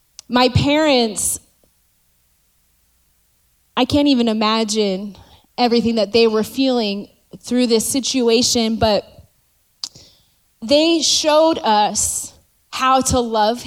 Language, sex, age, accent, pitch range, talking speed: English, female, 20-39, American, 220-255 Hz, 90 wpm